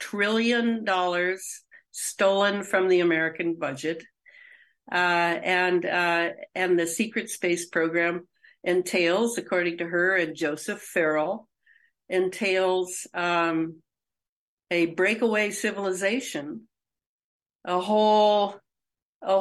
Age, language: 60-79, English